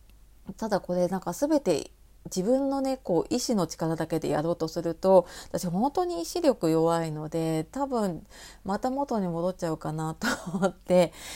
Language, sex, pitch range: Japanese, female, 170-235 Hz